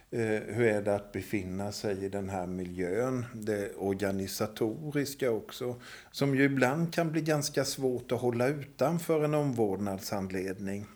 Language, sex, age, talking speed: Swedish, male, 50-69, 135 wpm